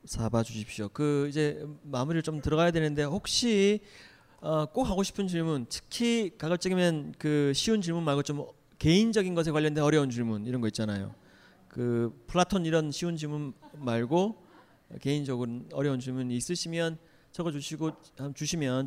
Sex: male